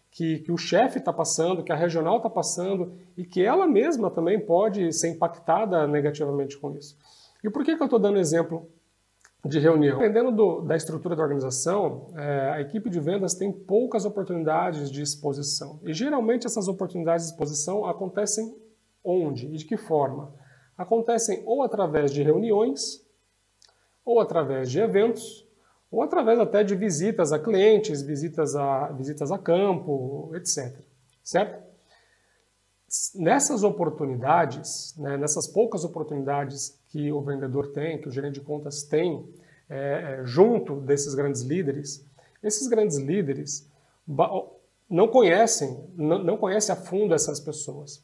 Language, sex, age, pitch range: Portuguese, male, 40-59, 145-205 Hz